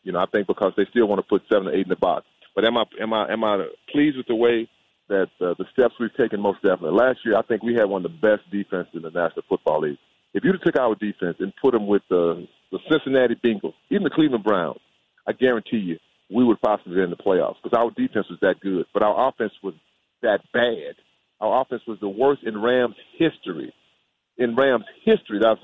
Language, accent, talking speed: English, American, 240 wpm